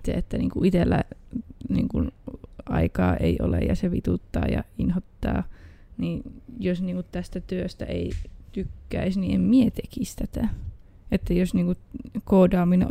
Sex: female